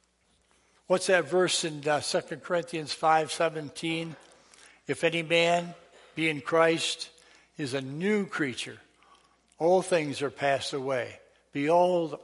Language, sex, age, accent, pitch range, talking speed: English, male, 60-79, American, 130-170 Hz, 120 wpm